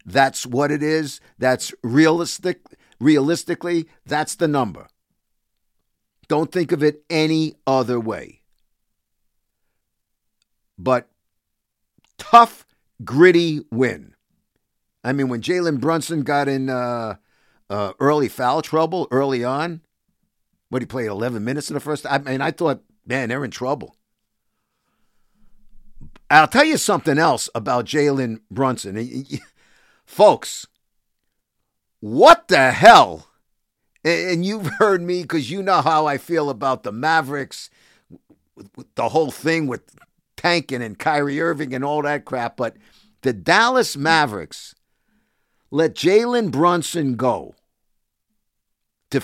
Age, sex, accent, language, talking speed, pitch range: 50-69, male, American, English, 120 wpm, 130-170 Hz